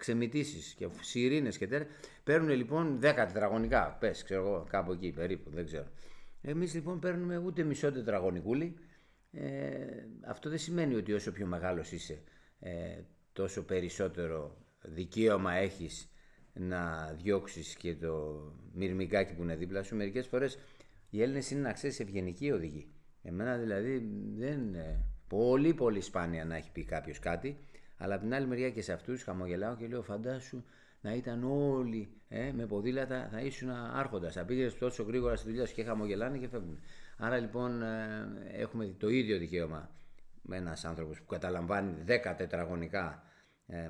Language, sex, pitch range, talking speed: Greek, male, 85-125 Hz, 155 wpm